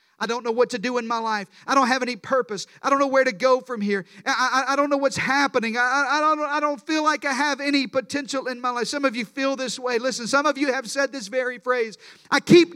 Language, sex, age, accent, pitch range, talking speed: English, male, 40-59, American, 250-310 Hz, 280 wpm